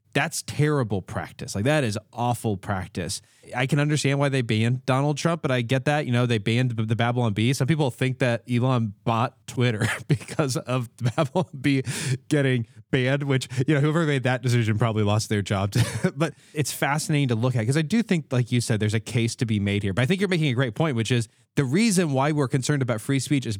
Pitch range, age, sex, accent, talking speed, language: 110-140 Hz, 20-39, male, American, 230 wpm, English